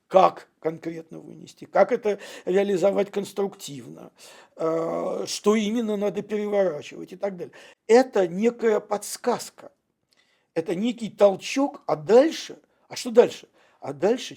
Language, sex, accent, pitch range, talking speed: Russian, male, native, 165-215 Hz, 115 wpm